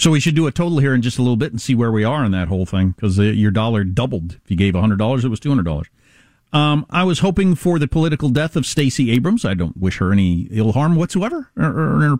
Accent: American